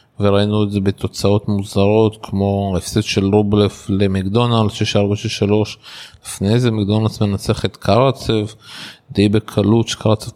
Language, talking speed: Hebrew, 115 wpm